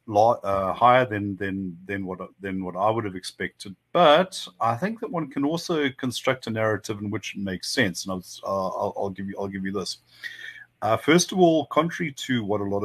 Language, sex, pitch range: English, male, 95-130 Hz